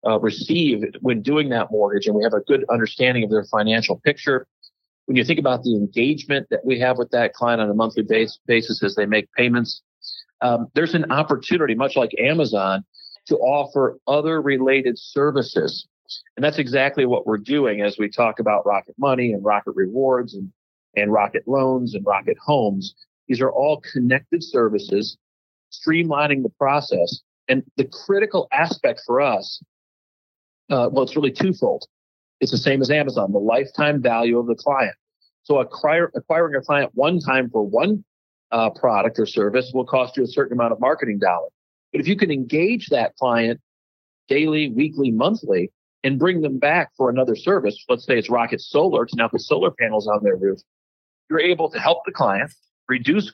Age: 40-59